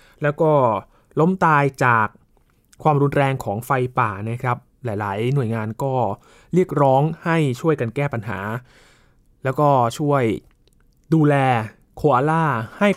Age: 20-39